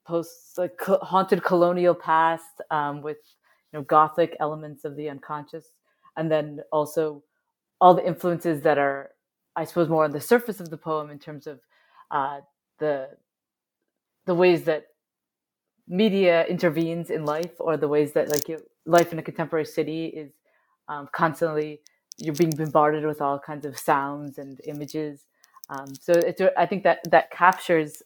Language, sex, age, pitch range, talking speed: English, female, 30-49, 150-175 Hz, 155 wpm